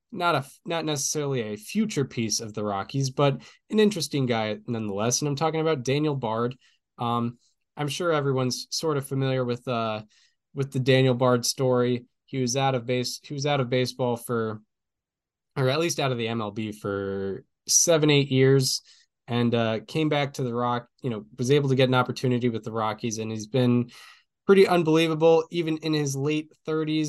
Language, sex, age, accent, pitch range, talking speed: English, male, 10-29, American, 125-155 Hz, 185 wpm